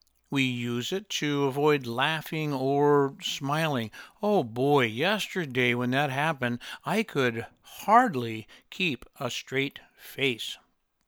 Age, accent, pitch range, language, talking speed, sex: 60-79, American, 125-150 Hz, English, 115 wpm, male